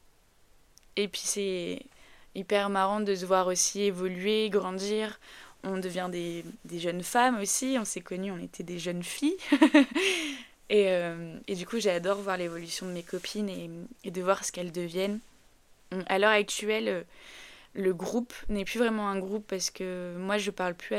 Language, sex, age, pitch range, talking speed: French, female, 20-39, 180-205 Hz, 175 wpm